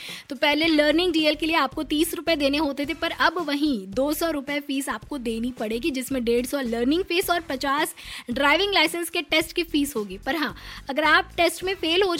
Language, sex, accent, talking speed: Hindi, female, native, 85 wpm